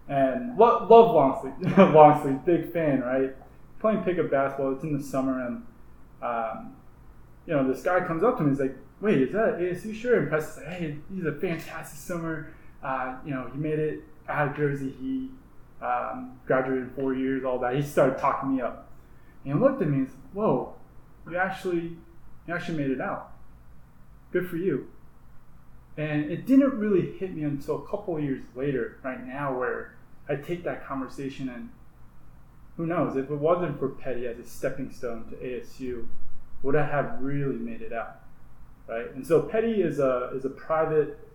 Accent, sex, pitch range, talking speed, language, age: American, male, 130-160 Hz, 185 wpm, English, 20-39